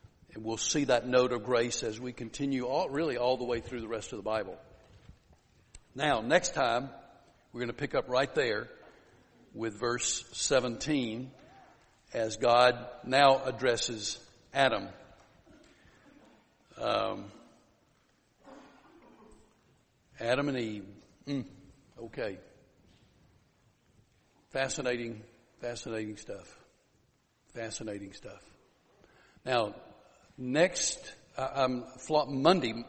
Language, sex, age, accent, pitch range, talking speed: English, male, 60-79, American, 110-130 Hz, 100 wpm